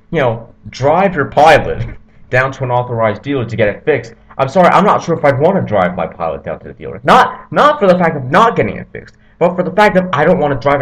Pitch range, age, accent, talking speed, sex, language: 105-135 Hz, 30-49, American, 275 wpm, male, English